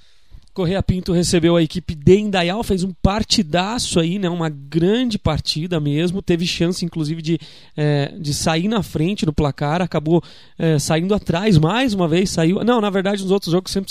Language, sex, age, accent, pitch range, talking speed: Portuguese, male, 20-39, Brazilian, 145-175 Hz, 180 wpm